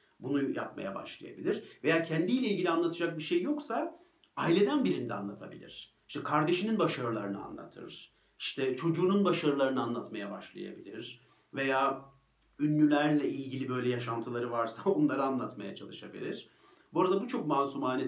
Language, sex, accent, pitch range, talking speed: Turkish, male, native, 120-155 Hz, 120 wpm